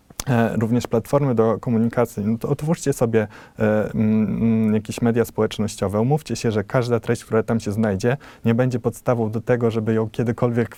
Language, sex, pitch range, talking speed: Polish, male, 110-120 Hz, 175 wpm